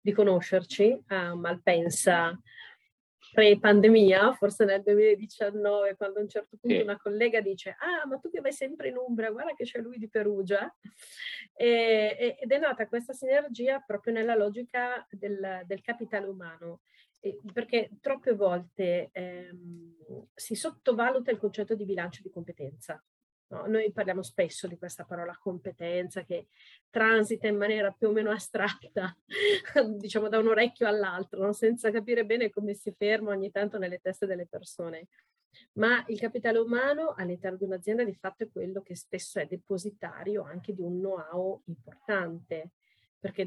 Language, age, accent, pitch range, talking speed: Italian, 30-49, native, 185-225 Hz, 150 wpm